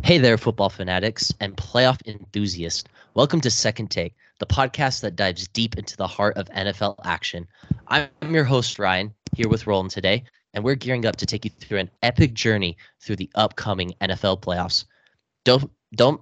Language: English